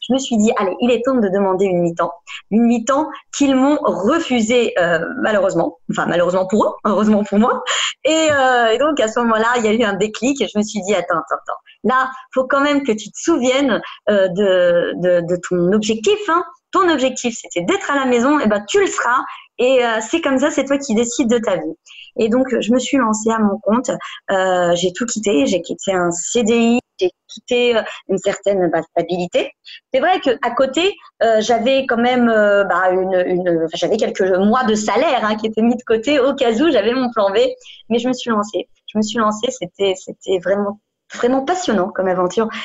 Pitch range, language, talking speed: 210-275 Hz, French, 215 wpm